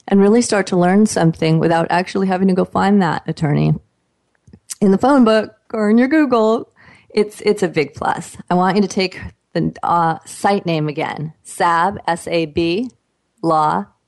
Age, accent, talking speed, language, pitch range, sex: 30-49, American, 170 wpm, English, 160-200 Hz, female